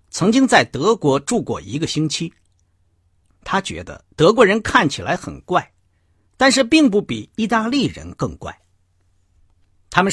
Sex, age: male, 50-69